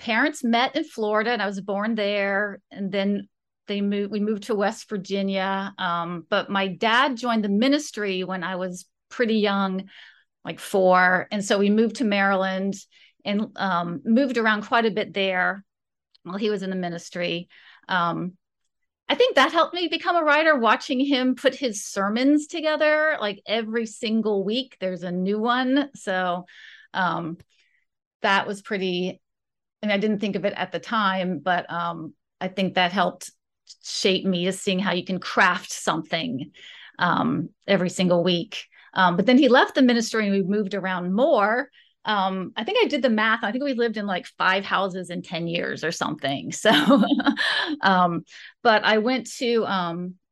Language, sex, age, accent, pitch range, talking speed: English, female, 40-59, American, 185-235 Hz, 175 wpm